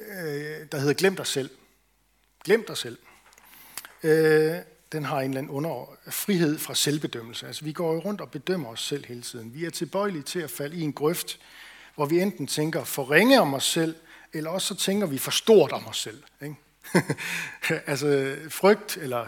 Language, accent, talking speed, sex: Danish, native, 175 wpm, male